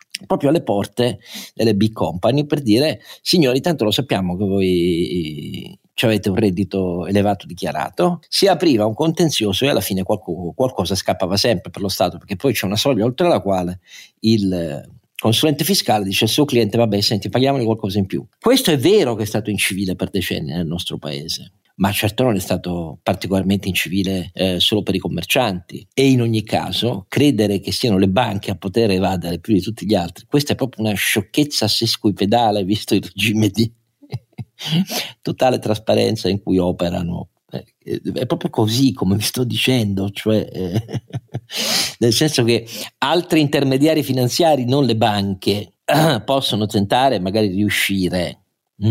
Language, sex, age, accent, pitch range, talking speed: Italian, male, 50-69, native, 95-125 Hz, 160 wpm